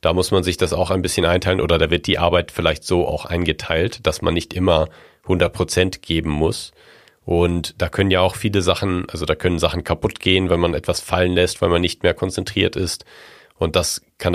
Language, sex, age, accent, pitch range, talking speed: German, male, 40-59, German, 80-95 Hz, 220 wpm